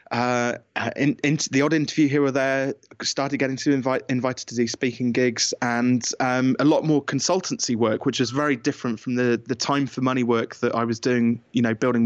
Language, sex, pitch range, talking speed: English, male, 120-145 Hz, 215 wpm